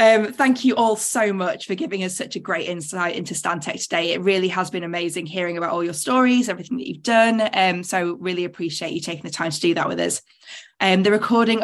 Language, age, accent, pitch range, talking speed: English, 20-39, British, 175-215 Hz, 235 wpm